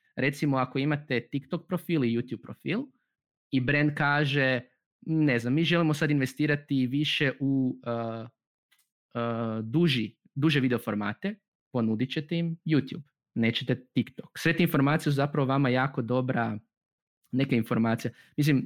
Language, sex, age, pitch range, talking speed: Croatian, male, 20-39, 125-160 Hz, 130 wpm